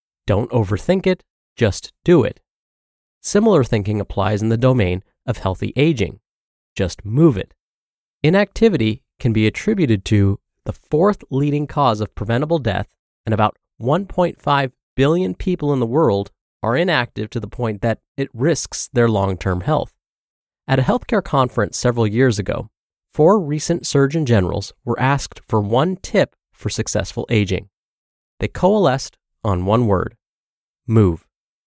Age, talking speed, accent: 30-49, 140 wpm, American